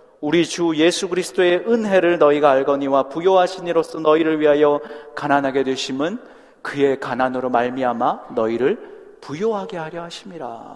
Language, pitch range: Korean, 140-190 Hz